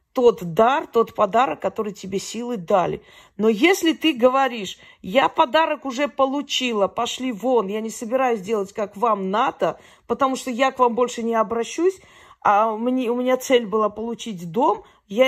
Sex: female